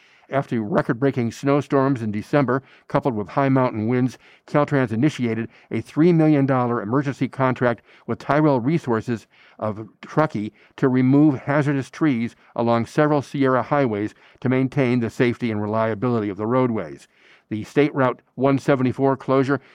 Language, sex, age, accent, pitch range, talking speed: English, male, 50-69, American, 115-145 Hz, 135 wpm